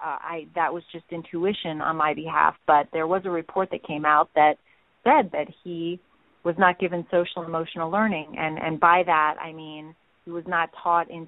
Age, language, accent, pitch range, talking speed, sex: 30-49, English, American, 160-190 Hz, 200 wpm, female